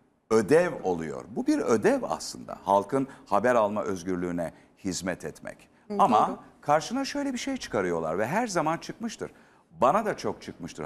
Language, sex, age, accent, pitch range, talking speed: Turkish, male, 60-79, native, 95-165 Hz, 145 wpm